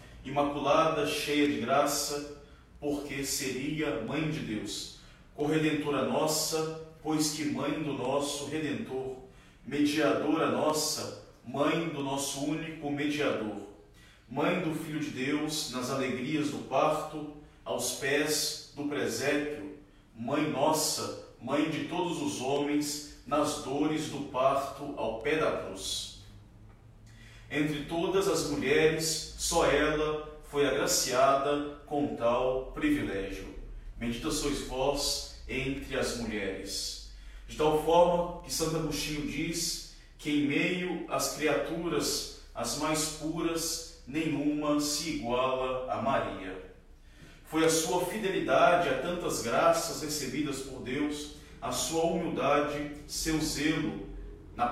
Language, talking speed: Portuguese, 115 wpm